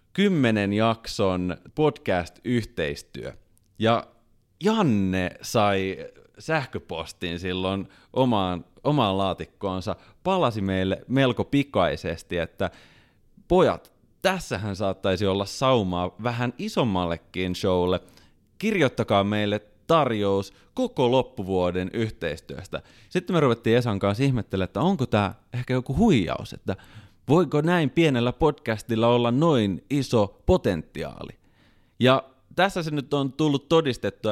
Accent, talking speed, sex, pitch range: native, 100 wpm, male, 100-135 Hz